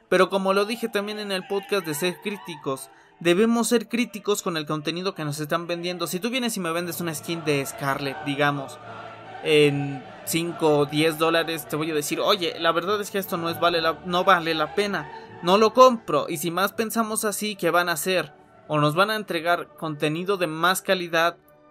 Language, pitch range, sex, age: Spanish, 155-190 Hz, male, 20-39